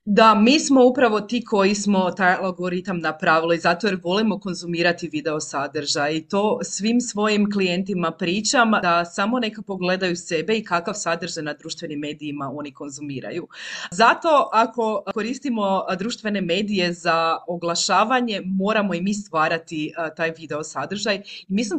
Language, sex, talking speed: Croatian, female, 140 wpm